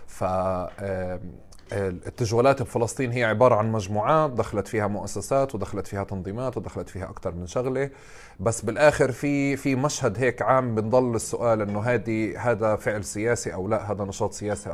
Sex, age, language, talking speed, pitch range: male, 30-49, Arabic, 145 wpm, 105-125 Hz